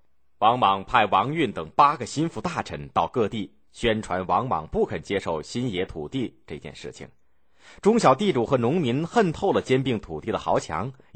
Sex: male